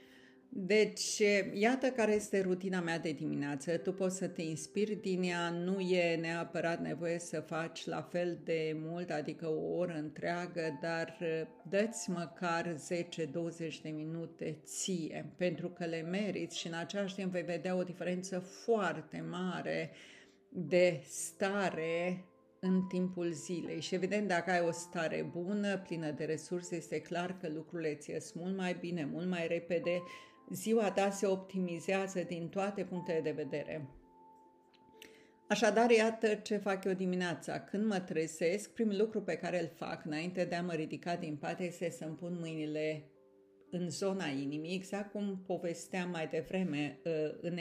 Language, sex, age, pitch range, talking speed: Romanian, female, 50-69, 160-185 Hz, 155 wpm